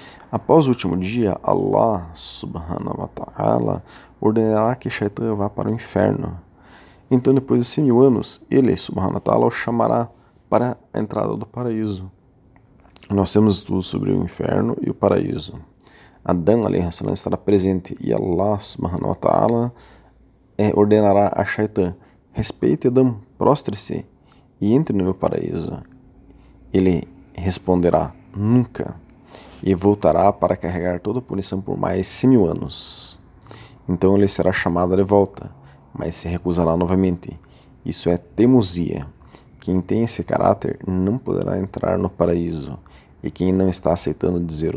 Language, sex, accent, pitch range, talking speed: Portuguese, male, Brazilian, 90-115 Hz, 140 wpm